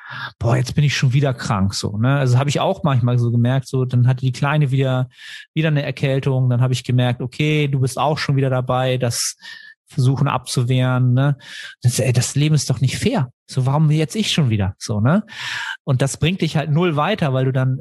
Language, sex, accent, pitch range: German, male, German, 125-145 Hz